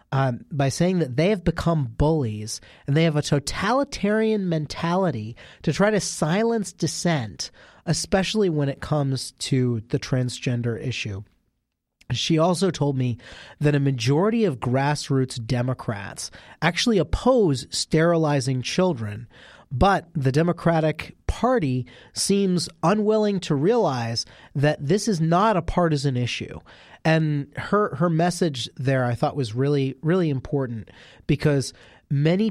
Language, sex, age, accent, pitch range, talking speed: English, male, 30-49, American, 125-170 Hz, 125 wpm